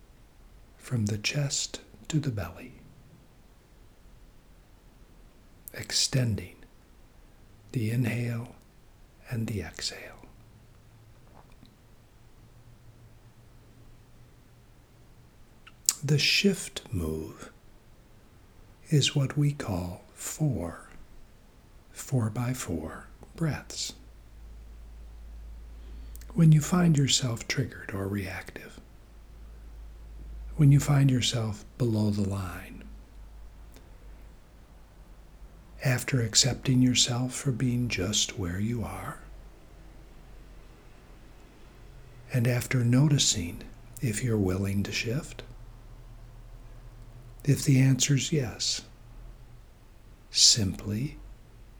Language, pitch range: English, 100-125 Hz